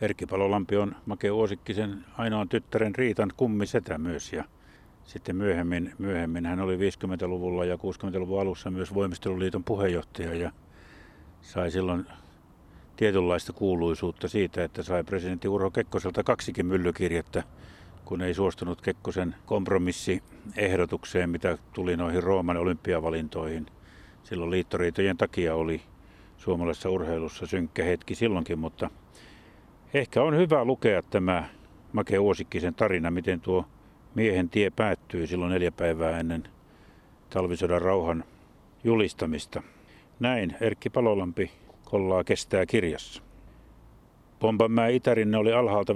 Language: Finnish